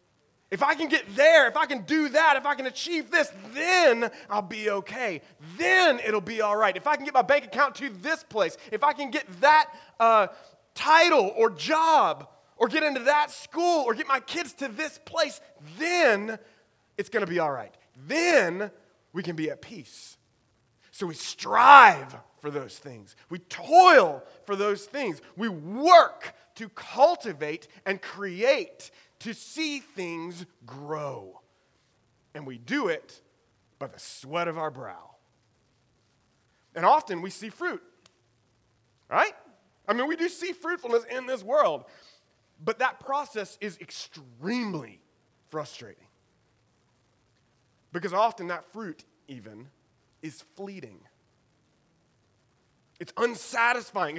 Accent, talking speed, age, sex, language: American, 145 wpm, 30-49, male, English